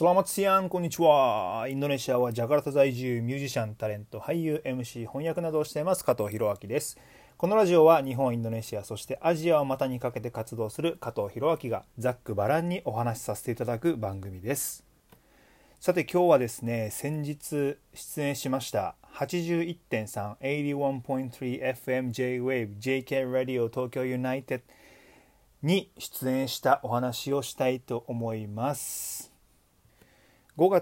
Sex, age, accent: male, 30-49, native